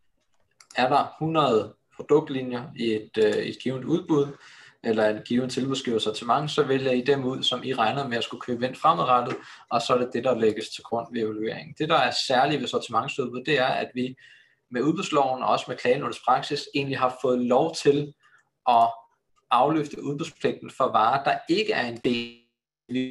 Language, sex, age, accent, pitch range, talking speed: Danish, male, 20-39, native, 115-145 Hz, 190 wpm